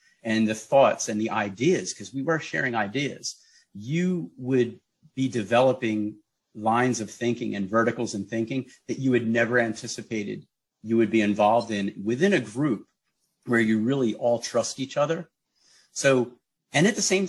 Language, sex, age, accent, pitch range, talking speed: English, male, 40-59, American, 110-140 Hz, 165 wpm